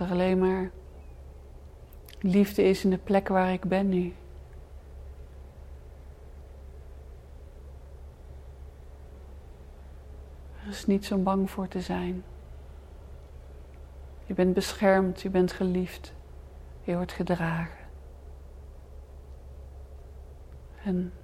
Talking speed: 80 wpm